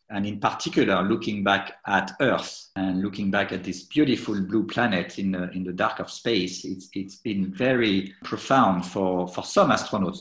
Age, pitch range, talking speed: 50-69, 95-125 Hz, 180 wpm